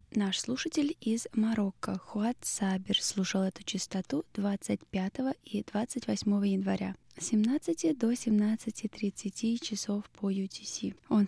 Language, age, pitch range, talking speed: Russian, 20-39, 185-225 Hz, 105 wpm